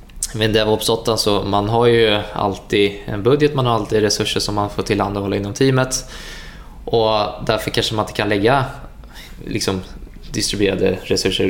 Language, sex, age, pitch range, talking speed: Swedish, male, 20-39, 100-120 Hz, 165 wpm